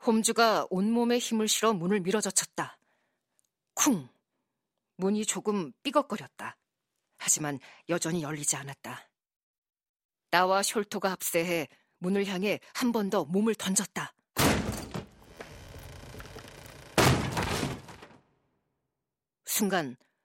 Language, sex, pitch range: Korean, female, 170-215 Hz